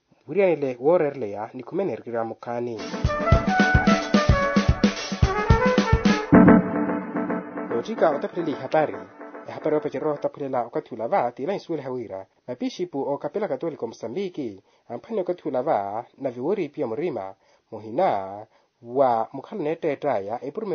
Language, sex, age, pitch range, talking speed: Portuguese, male, 30-49, 115-180 Hz, 65 wpm